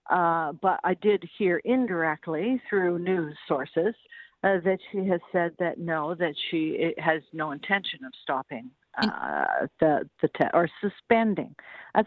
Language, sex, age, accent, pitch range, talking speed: English, female, 60-79, American, 175-240 Hz, 155 wpm